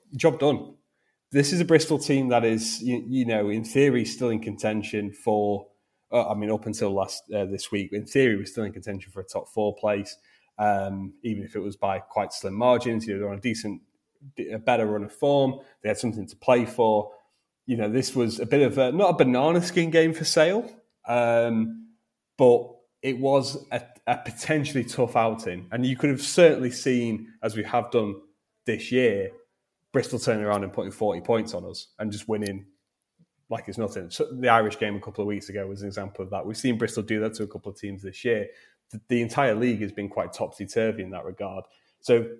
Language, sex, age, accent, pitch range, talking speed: English, male, 30-49, British, 100-125 Hz, 215 wpm